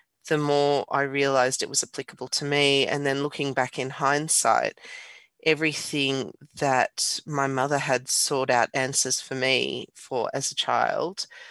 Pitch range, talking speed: 130-145 Hz, 150 wpm